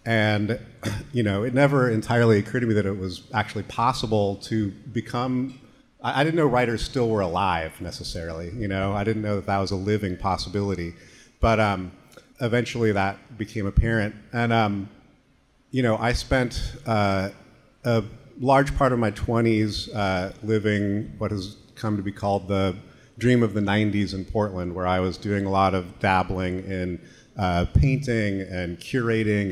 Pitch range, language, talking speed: 95-115 Hz, English, 165 wpm